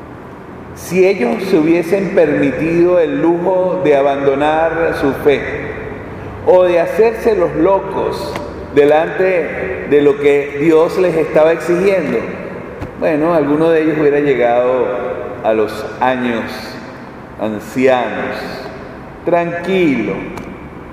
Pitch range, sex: 135-170 Hz, male